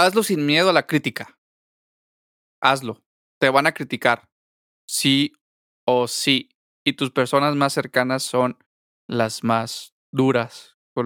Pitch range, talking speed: 120-145 Hz, 130 wpm